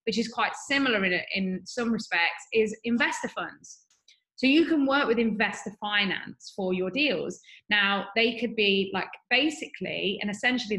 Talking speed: 155 wpm